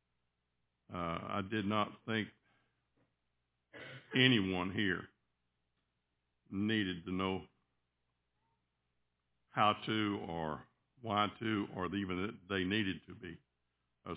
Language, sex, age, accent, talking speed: English, male, 60-79, American, 95 wpm